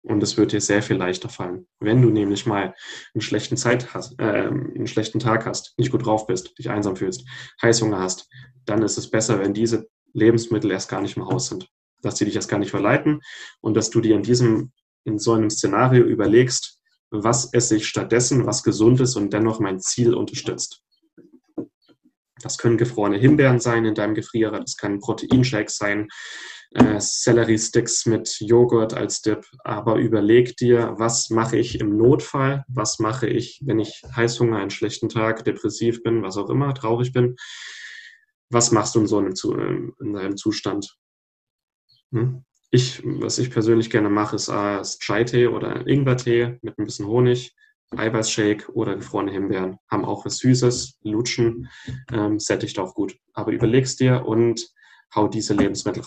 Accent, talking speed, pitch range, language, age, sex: German, 170 wpm, 105-125 Hz, German, 10-29, male